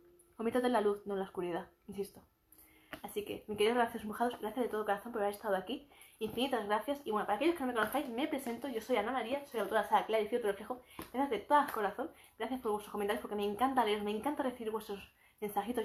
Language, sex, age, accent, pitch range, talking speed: Spanish, female, 20-39, Spanish, 205-250 Hz, 240 wpm